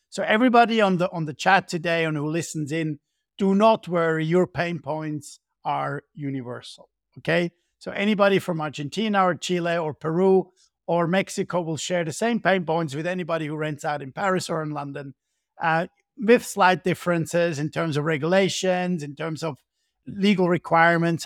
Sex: male